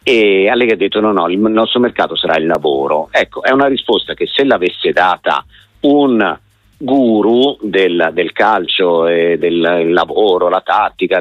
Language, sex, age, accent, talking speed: Italian, male, 50-69, native, 165 wpm